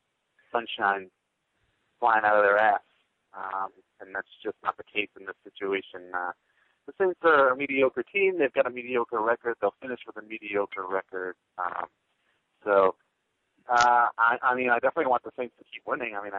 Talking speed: 185 wpm